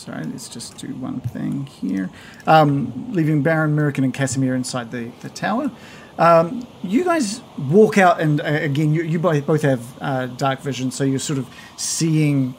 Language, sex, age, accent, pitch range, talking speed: English, male, 40-59, Australian, 135-160 Hz, 175 wpm